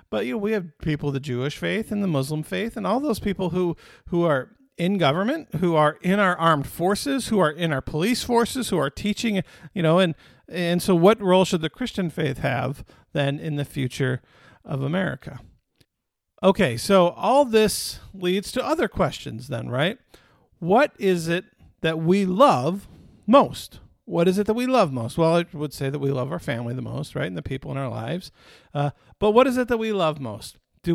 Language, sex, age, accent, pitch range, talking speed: English, male, 50-69, American, 145-200 Hz, 205 wpm